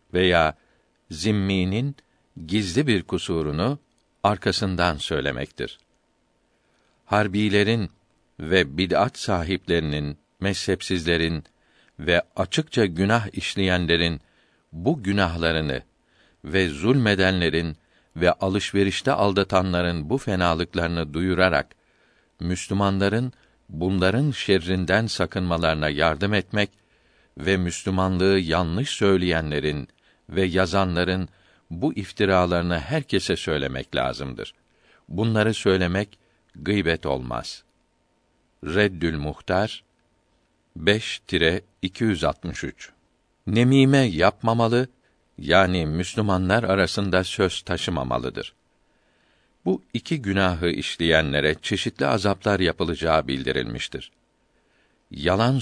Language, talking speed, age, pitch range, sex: Turkish, 70 wpm, 60-79, 85-100 Hz, male